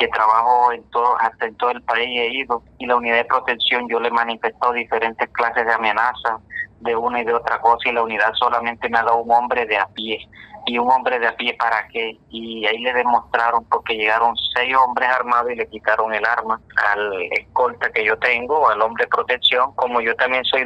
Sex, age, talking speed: male, 30-49, 215 wpm